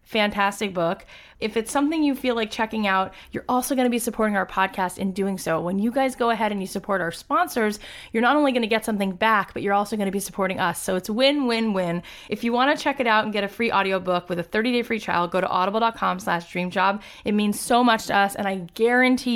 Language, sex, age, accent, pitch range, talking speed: English, female, 20-39, American, 190-235 Hz, 245 wpm